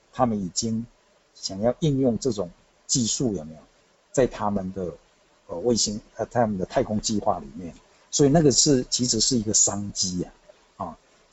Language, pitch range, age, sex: Chinese, 105-130 Hz, 60-79, male